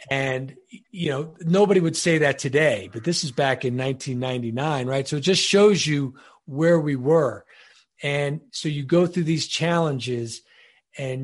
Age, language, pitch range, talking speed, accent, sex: 40-59, English, 130-165 Hz, 165 wpm, American, male